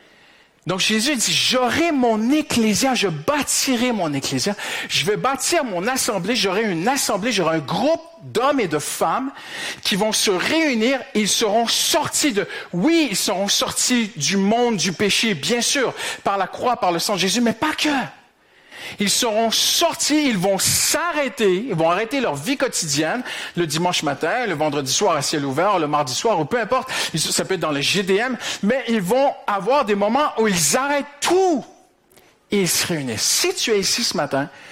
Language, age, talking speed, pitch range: French, 50-69, 185 wpm, 165-255 Hz